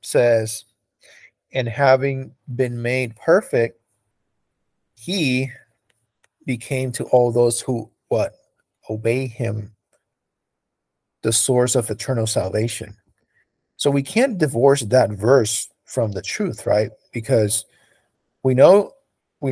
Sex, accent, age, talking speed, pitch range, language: male, American, 40-59, 105 wpm, 110-130 Hz, English